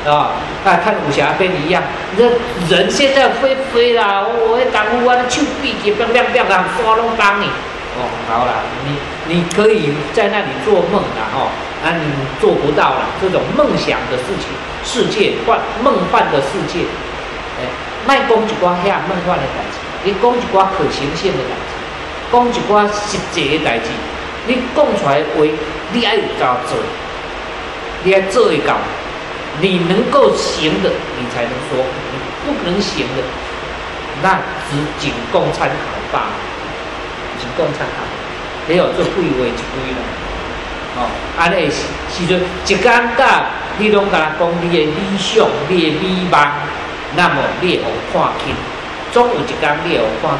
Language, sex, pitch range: Chinese, male, 155-240 Hz